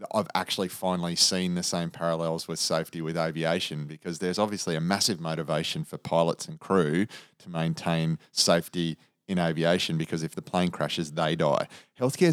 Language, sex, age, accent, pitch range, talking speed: English, male, 30-49, Australian, 80-90 Hz, 165 wpm